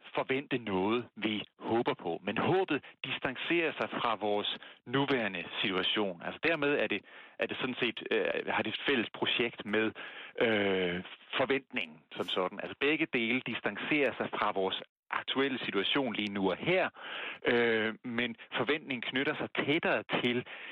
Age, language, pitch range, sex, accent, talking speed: 40-59, Danish, 100-130 Hz, male, native, 155 wpm